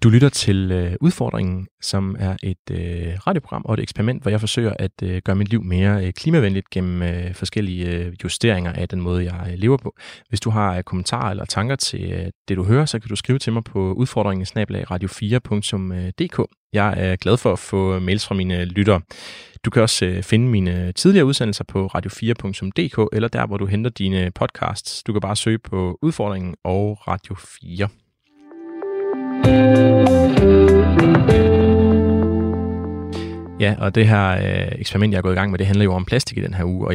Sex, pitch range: male, 90-110 Hz